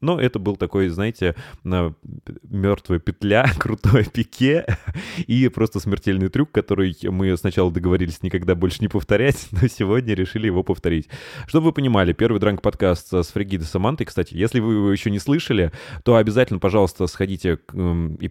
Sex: male